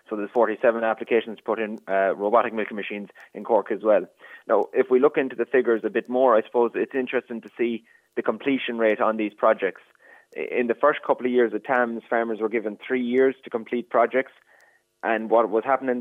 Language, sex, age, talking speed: English, male, 20-39, 210 wpm